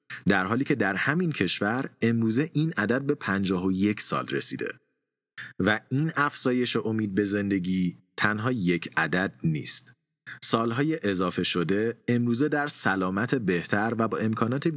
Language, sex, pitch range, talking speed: Persian, male, 95-130 Hz, 145 wpm